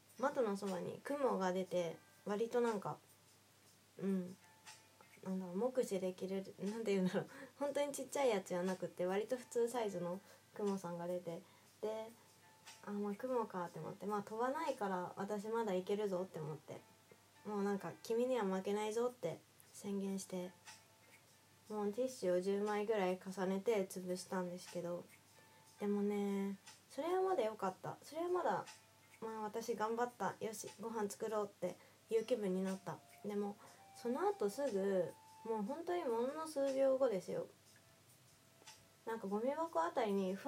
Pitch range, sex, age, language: 185-245 Hz, female, 20-39, Japanese